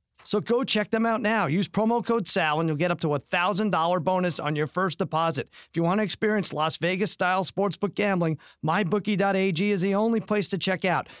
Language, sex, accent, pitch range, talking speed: English, male, American, 160-215 Hz, 210 wpm